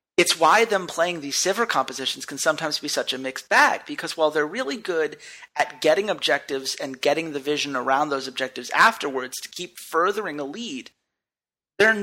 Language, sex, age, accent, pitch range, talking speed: English, male, 40-59, American, 160-255 Hz, 180 wpm